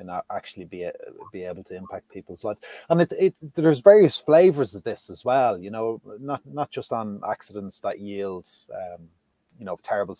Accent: Irish